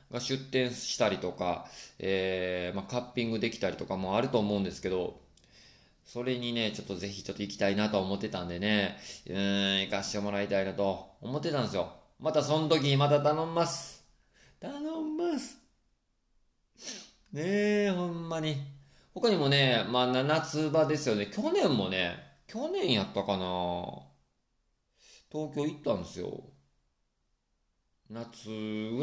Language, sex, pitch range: Japanese, male, 95-155 Hz